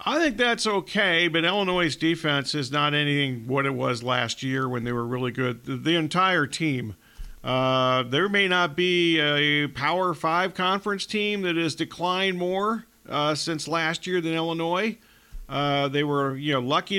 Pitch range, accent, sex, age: 130-170 Hz, American, male, 50-69